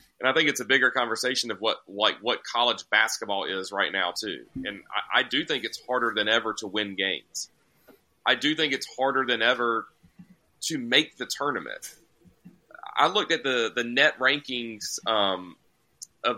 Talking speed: 180 wpm